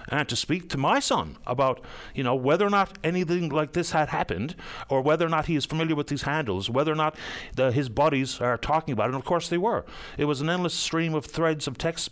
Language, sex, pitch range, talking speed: English, male, 125-160 Hz, 250 wpm